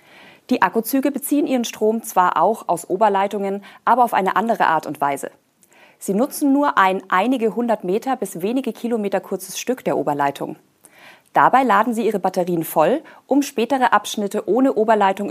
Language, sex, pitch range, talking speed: German, female, 180-230 Hz, 160 wpm